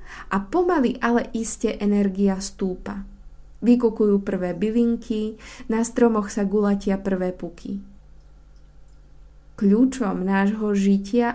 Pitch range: 175-230 Hz